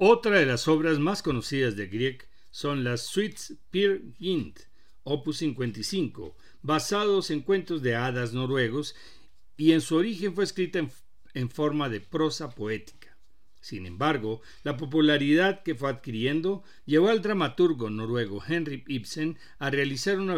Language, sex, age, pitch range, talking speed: Spanish, male, 60-79, 120-160 Hz, 145 wpm